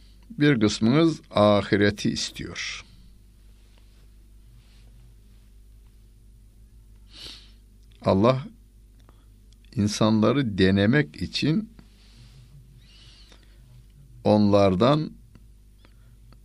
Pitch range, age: 100-115 Hz, 60-79